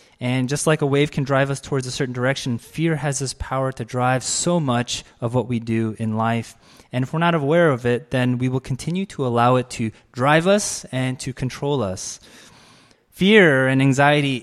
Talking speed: 210 wpm